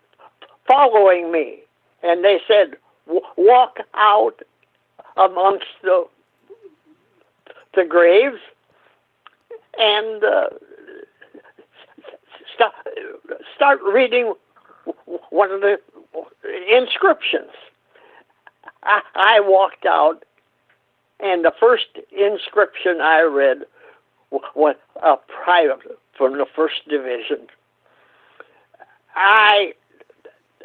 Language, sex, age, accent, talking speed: English, male, 60-79, American, 75 wpm